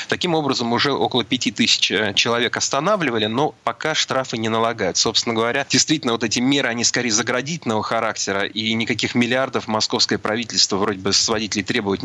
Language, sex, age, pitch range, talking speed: Russian, male, 30-49, 105-125 Hz, 160 wpm